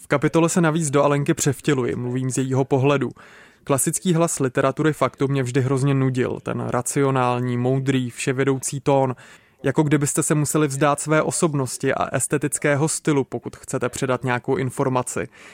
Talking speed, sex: 150 wpm, male